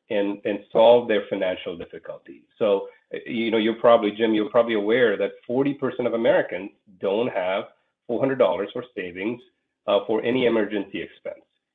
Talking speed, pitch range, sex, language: 150 wpm, 105-140 Hz, male, English